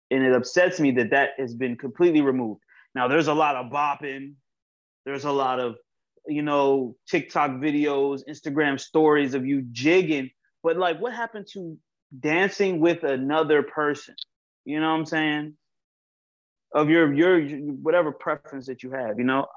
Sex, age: male, 20-39